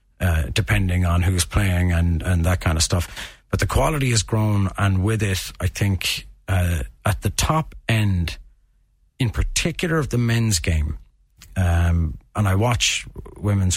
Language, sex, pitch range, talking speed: English, male, 90-110 Hz, 160 wpm